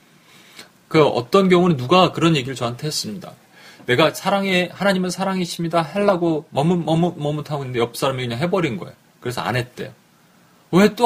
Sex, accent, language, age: male, native, Korean, 30-49